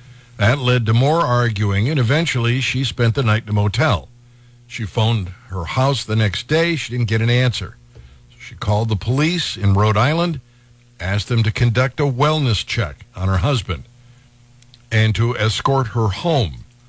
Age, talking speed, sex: 60-79, 170 wpm, male